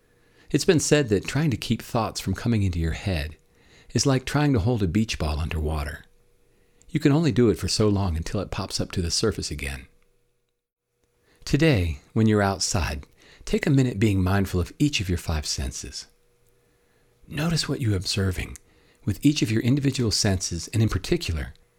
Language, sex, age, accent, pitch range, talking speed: English, male, 40-59, American, 85-125 Hz, 185 wpm